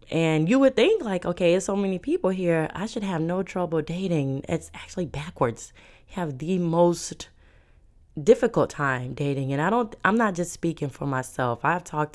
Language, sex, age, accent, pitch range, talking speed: English, female, 20-39, American, 140-175 Hz, 190 wpm